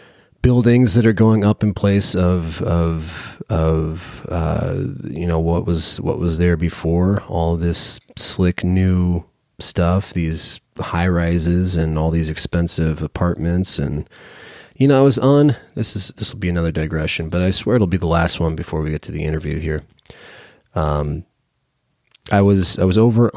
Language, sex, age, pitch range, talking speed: English, male, 30-49, 80-95 Hz, 170 wpm